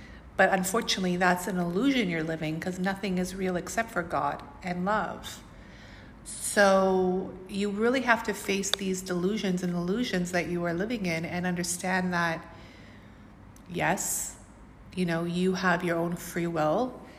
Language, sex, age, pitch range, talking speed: English, female, 30-49, 175-190 Hz, 150 wpm